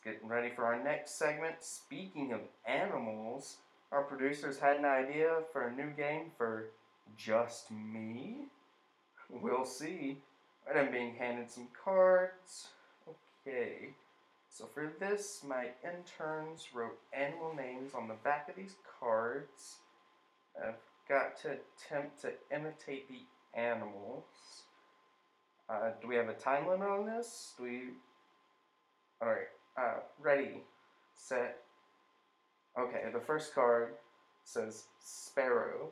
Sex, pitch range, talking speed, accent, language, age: male, 120-160 Hz, 120 wpm, American, English, 20-39